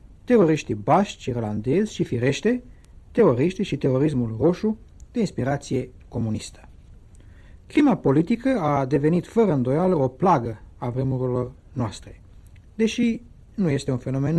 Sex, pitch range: male, 120-185 Hz